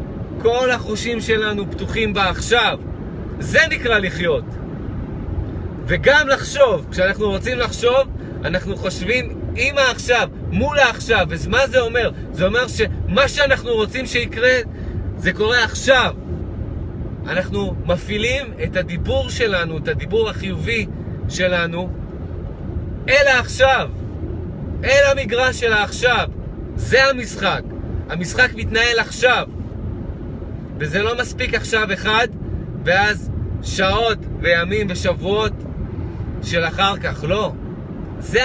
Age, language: 30-49, Hebrew